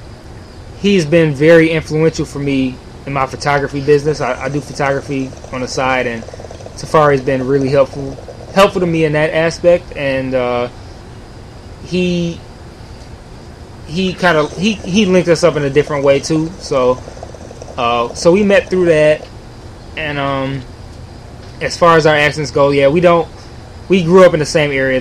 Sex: male